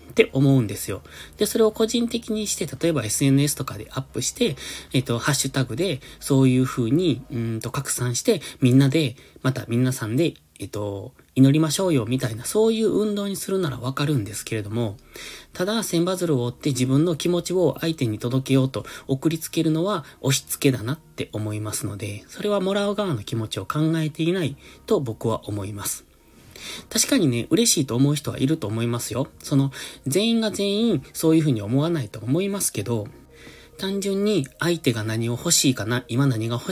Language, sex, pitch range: Japanese, male, 115-160 Hz